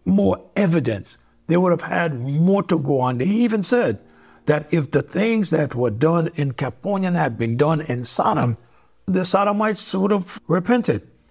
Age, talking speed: 60-79, 170 wpm